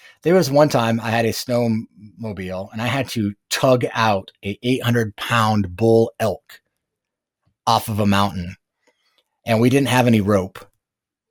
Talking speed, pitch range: 155 wpm, 100-125 Hz